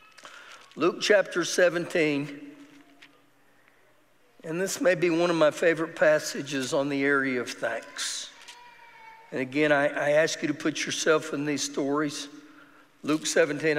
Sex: male